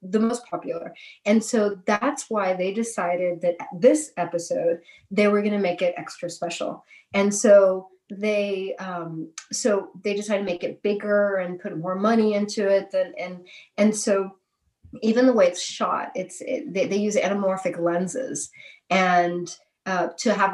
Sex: female